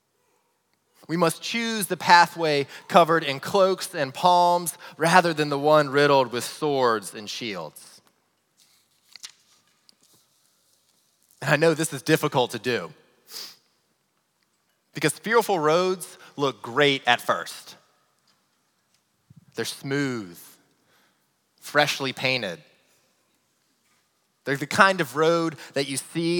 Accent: American